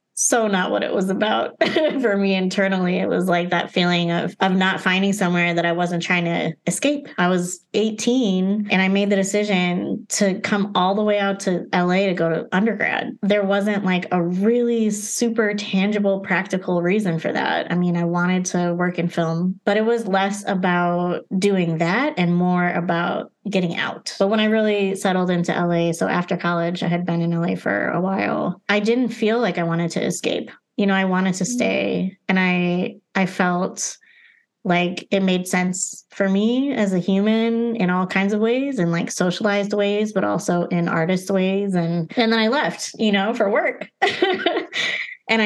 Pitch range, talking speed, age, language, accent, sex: 180-215 Hz, 190 wpm, 20-39, English, American, female